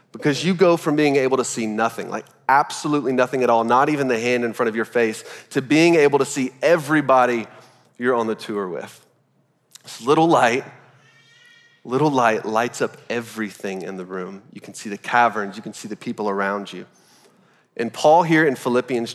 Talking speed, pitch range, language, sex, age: 195 wpm, 115-155 Hz, English, male, 30-49